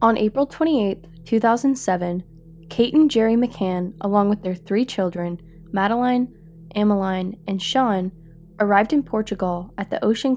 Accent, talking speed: American, 135 wpm